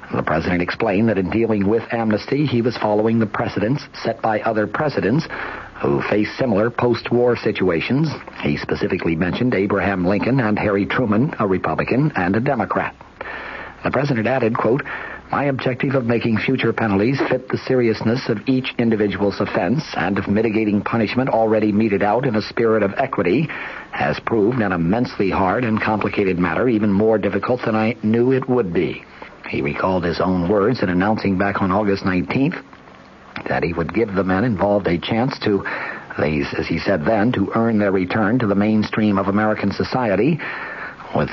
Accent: American